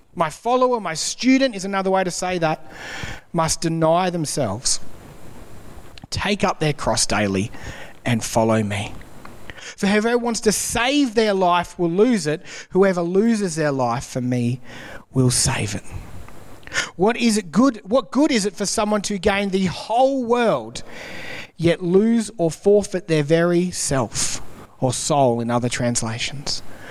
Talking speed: 150 wpm